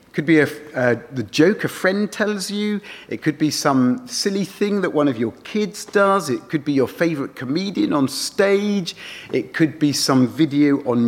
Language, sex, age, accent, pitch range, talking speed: English, male, 40-59, British, 135-210 Hz, 190 wpm